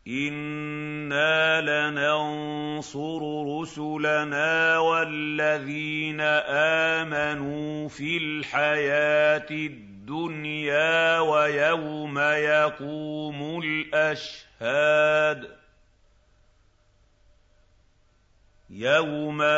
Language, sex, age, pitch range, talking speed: Arabic, male, 50-69, 130-150 Hz, 35 wpm